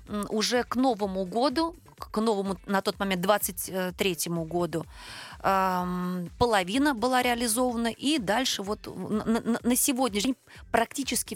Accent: native